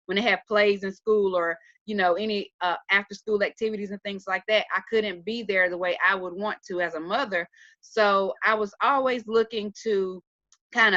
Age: 30-49